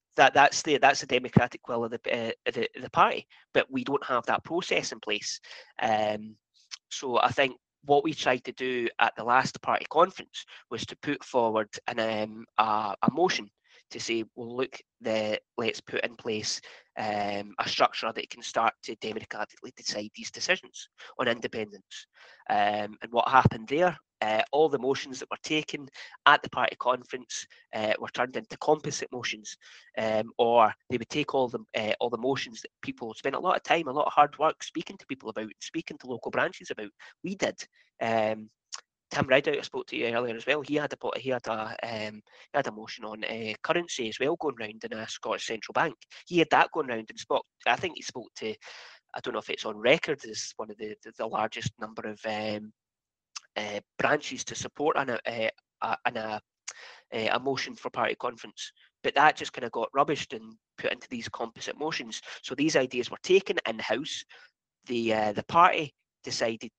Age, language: 20-39, English